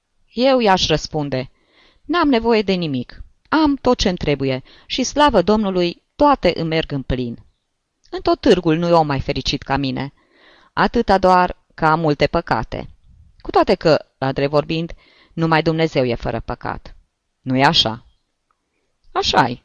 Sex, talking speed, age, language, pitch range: female, 145 wpm, 20-39, Romanian, 135-195 Hz